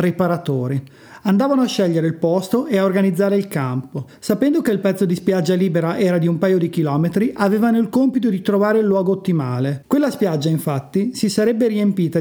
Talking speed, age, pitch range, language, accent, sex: 185 wpm, 30-49, 160-210 Hz, Italian, native, male